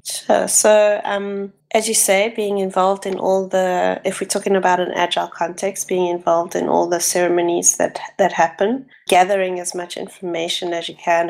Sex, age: female, 20-39